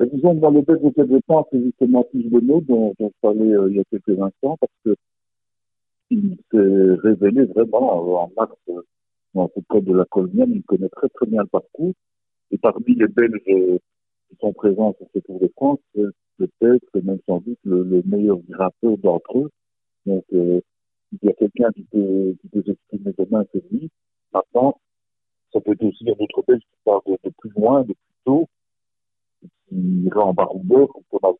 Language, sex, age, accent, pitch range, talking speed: French, male, 50-69, French, 95-130 Hz, 195 wpm